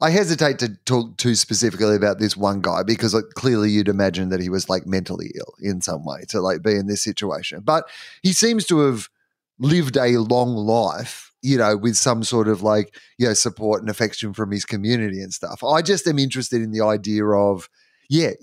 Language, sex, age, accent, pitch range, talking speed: English, male, 30-49, Australian, 105-125 Hz, 210 wpm